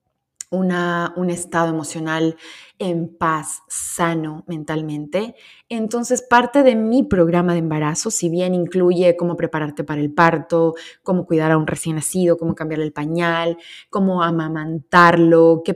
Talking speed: 135 wpm